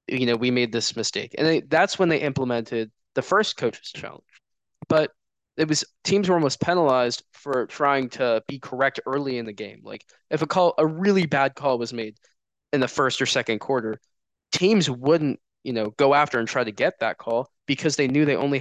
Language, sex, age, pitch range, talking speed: English, male, 20-39, 115-140 Hz, 210 wpm